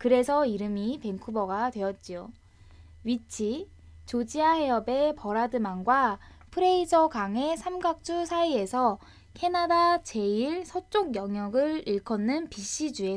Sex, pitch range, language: female, 210-285 Hz, Korean